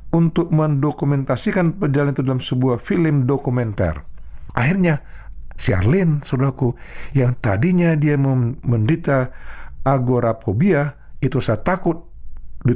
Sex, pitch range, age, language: male, 105-160 Hz, 50-69, Indonesian